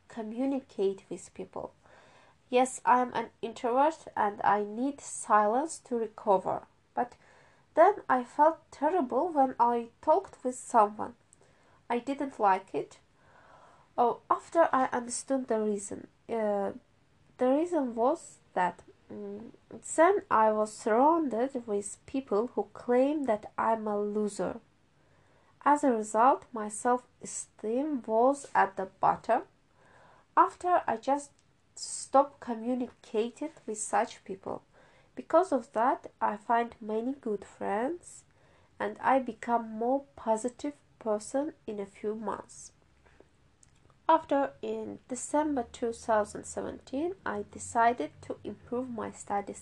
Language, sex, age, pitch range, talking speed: English, female, 20-39, 220-280 Hz, 115 wpm